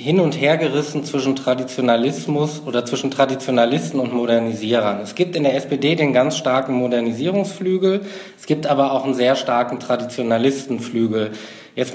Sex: male